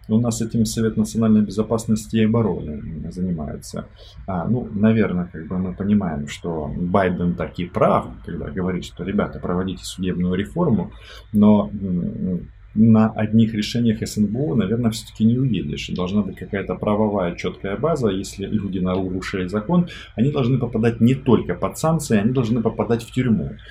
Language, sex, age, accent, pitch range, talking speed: Russian, male, 20-39, native, 90-110 Hz, 150 wpm